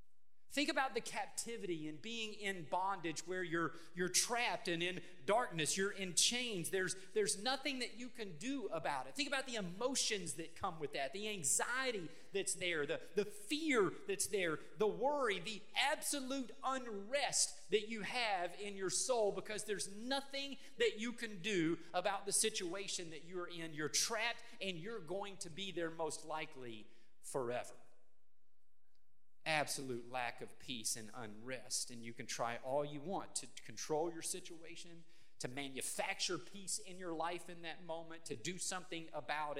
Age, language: 40-59, English